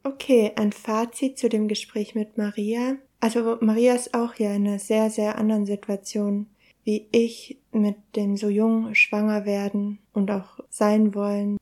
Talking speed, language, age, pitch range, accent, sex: 160 wpm, German, 20-39, 195-215 Hz, German, female